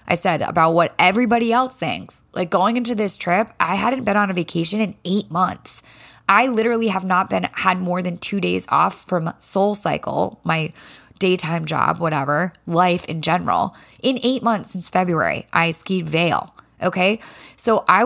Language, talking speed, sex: English, 175 wpm, female